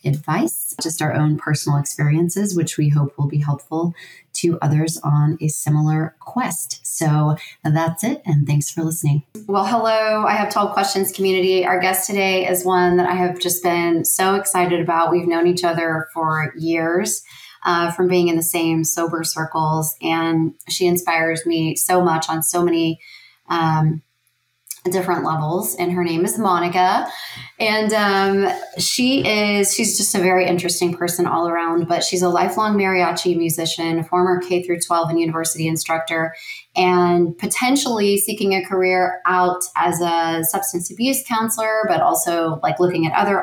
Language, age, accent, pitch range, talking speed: English, 30-49, American, 165-185 Hz, 165 wpm